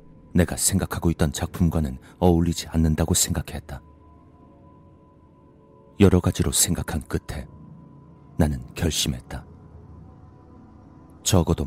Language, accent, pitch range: Korean, native, 75-90 Hz